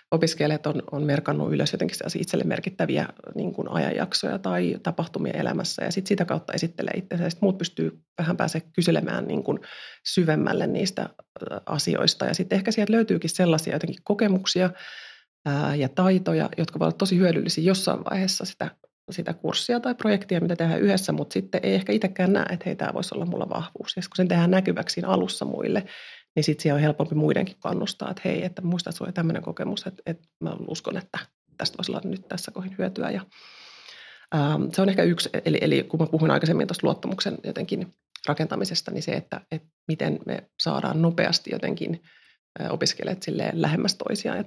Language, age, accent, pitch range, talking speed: Finnish, 30-49, native, 165-200 Hz, 165 wpm